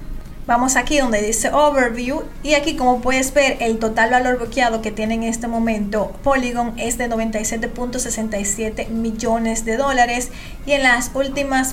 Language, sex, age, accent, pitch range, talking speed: Spanish, female, 30-49, American, 220-255 Hz, 155 wpm